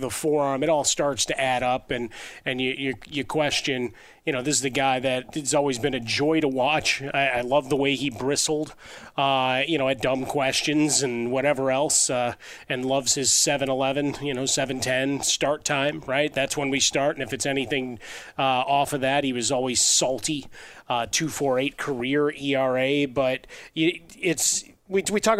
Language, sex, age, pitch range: English, male, 30-49, 130-145 Hz